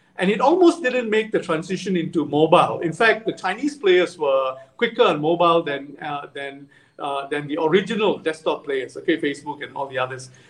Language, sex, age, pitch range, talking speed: English, male, 50-69, 155-230 Hz, 190 wpm